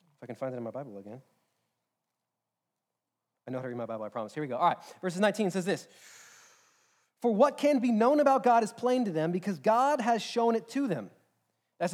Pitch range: 165-225 Hz